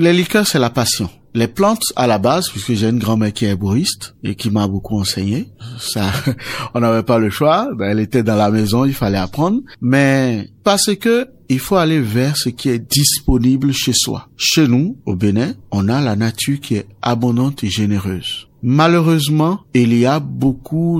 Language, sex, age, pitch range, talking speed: French, male, 50-69, 115-155 Hz, 190 wpm